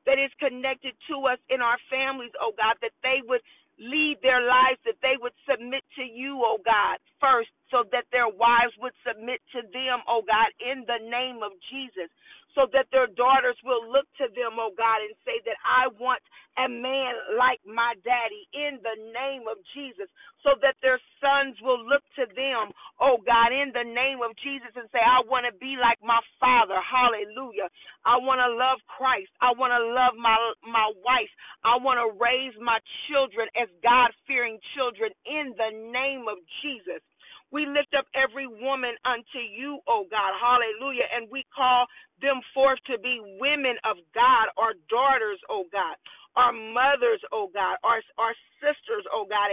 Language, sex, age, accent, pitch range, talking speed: English, female, 40-59, American, 235-270 Hz, 190 wpm